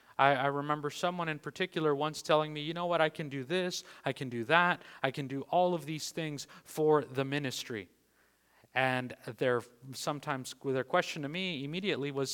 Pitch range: 145-185 Hz